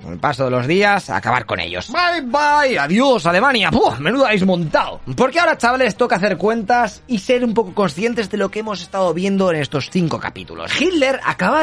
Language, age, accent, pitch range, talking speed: Spanish, 30-49, Spanish, 175-250 Hz, 205 wpm